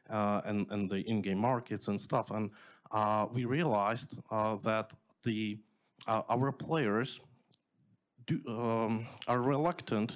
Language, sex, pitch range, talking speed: English, male, 110-130 Hz, 130 wpm